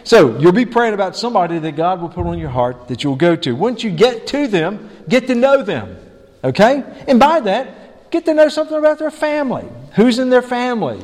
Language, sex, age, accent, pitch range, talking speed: English, male, 50-69, American, 145-225 Hz, 225 wpm